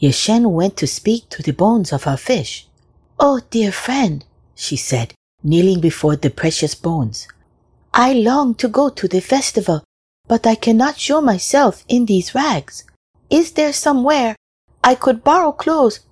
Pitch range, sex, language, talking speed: 140-230 Hz, female, English, 155 wpm